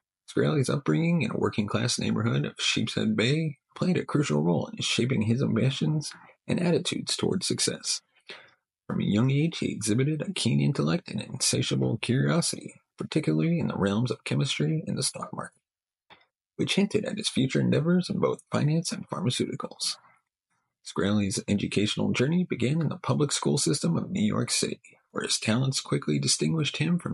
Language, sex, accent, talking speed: English, male, American, 165 wpm